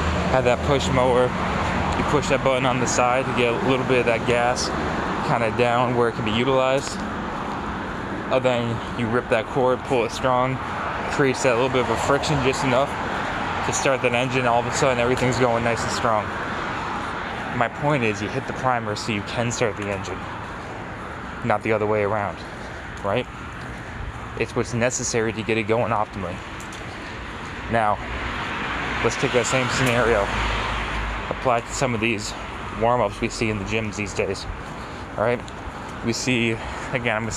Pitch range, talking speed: 105-120 Hz, 180 wpm